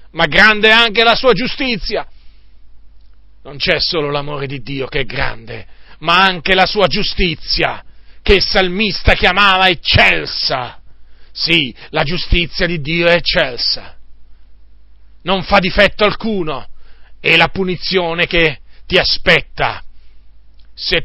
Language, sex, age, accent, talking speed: Italian, male, 40-59, native, 125 wpm